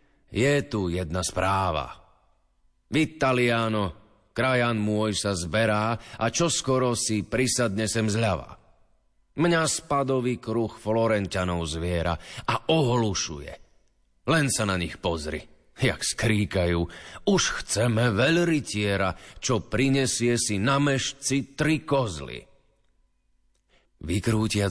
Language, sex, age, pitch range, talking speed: Slovak, male, 40-59, 90-120 Hz, 95 wpm